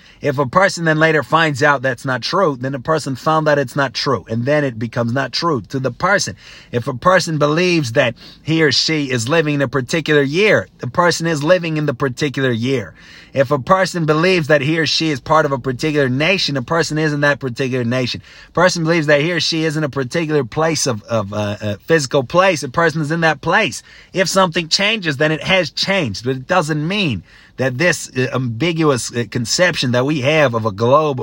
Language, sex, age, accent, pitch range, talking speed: English, male, 30-49, American, 120-155 Hz, 225 wpm